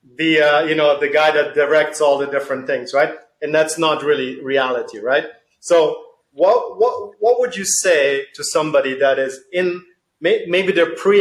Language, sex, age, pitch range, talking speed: English, male, 30-49, 145-195 Hz, 185 wpm